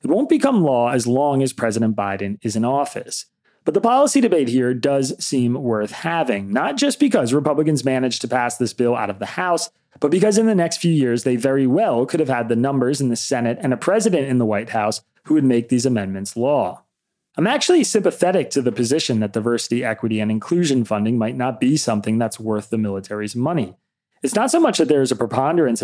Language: English